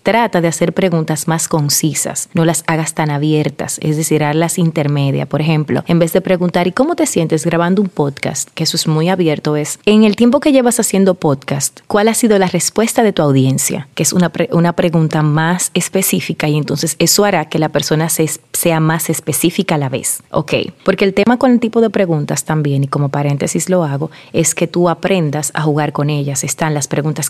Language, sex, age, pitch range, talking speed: Spanish, female, 30-49, 150-185 Hz, 215 wpm